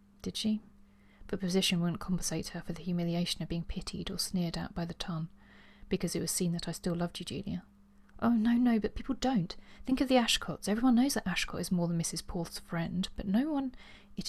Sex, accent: female, British